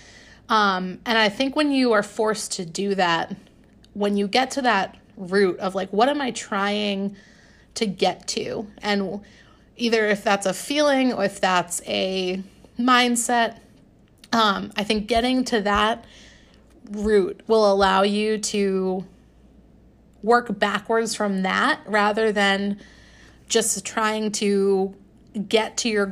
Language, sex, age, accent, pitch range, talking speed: English, female, 30-49, American, 195-225 Hz, 140 wpm